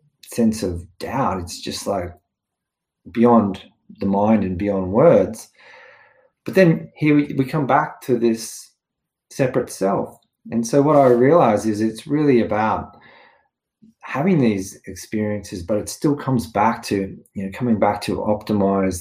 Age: 30-49